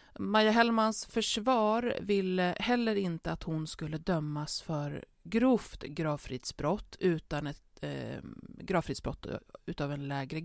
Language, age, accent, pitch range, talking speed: Swedish, 30-49, native, 155-195 Hz, 115 wpm